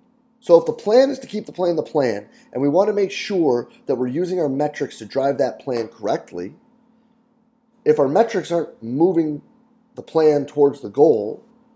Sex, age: male, 30-49